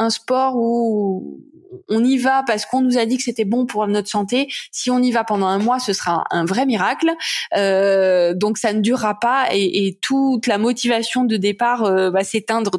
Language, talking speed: French, 205 wpm